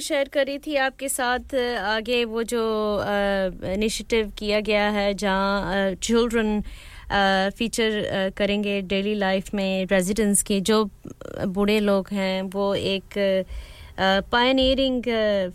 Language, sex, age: English, female, 30-49